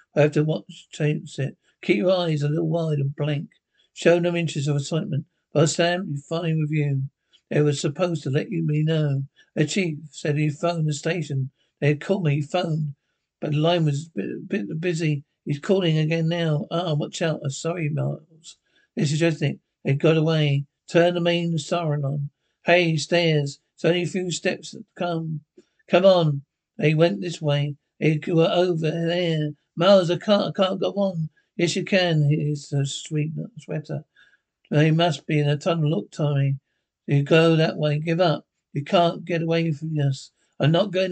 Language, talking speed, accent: English, 200 wpm, British